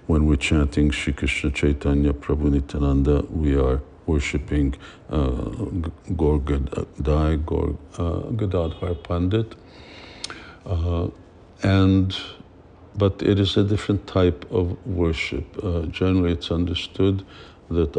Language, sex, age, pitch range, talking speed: English, male, 60-79, 75-90 Hz, 105 wpm